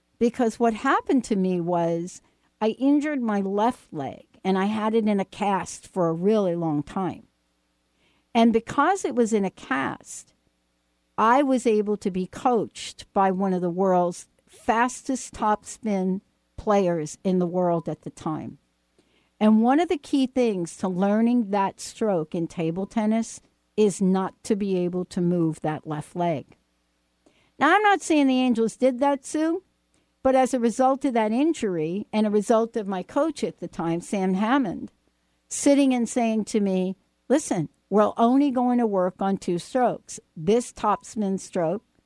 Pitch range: 180-255 Hz